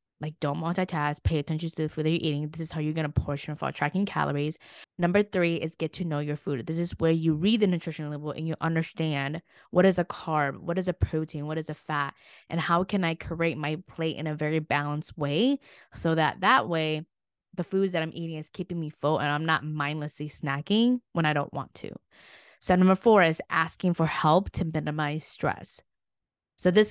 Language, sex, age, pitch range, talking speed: English, female, 20-39, 150-180 Hz, 220 wpm